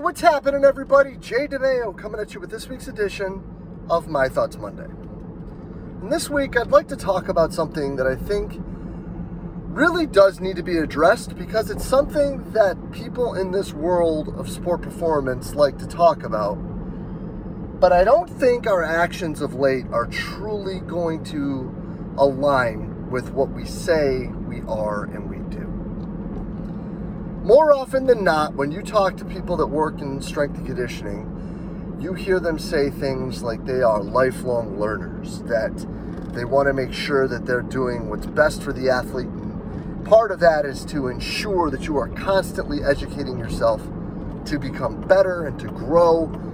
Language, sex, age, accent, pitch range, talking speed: English, male, 30-49, American, 160-200 Hz, 160 wpm